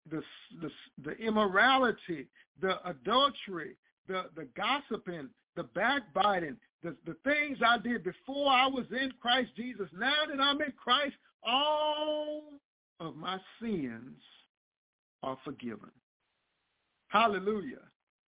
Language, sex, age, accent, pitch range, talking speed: English, male, 50-69, American, 165-235 Hz, 110 wpm